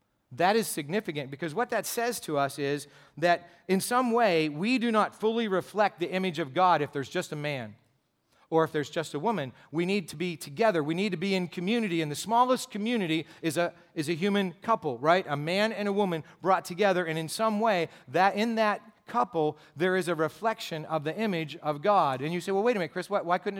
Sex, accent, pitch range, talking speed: male, American, 155-195 Hz, 230 wpm